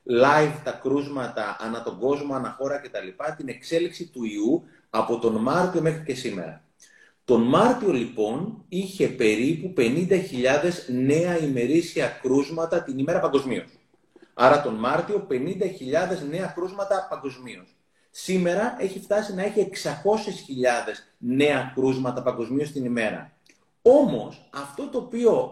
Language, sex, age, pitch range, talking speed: Greek, male, 30-49, 135-205 Hz, 125 wpm